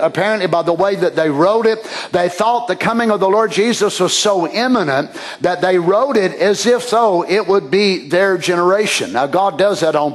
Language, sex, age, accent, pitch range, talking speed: English, male, 50-69, American, 195-225 Hz, 215 wpm